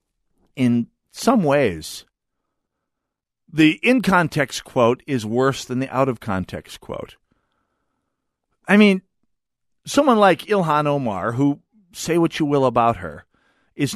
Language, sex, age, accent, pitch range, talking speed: English, male, 50-69, American, 120-200 Hz, 110 wpm